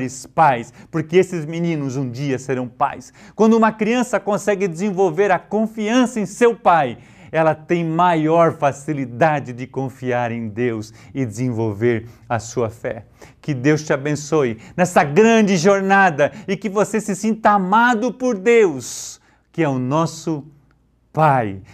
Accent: Brazilian